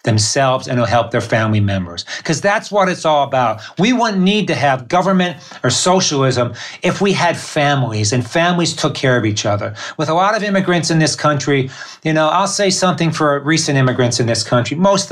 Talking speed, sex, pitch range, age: 205 wpm, male, 125-165 Hz, 40-59